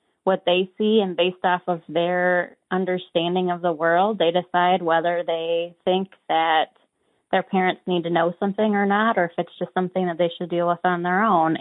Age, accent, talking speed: 20-39, American, 200 wpm